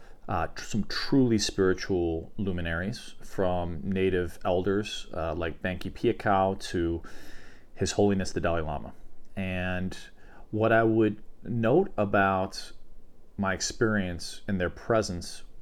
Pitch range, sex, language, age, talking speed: 95-115 Hz, male, English, 40-59, 110 wpm